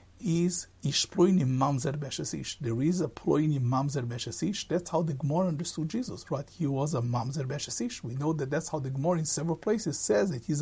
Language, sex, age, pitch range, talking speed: English, male, 60-79, 140-205 Hz, 200 wpm